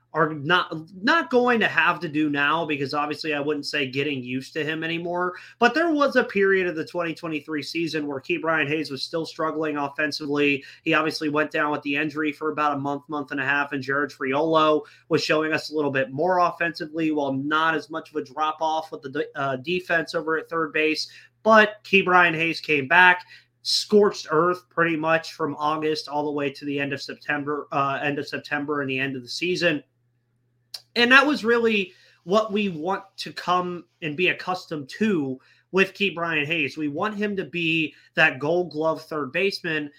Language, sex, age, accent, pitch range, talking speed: English, male, 30-49, American, 145-180 Hz, 205 wpm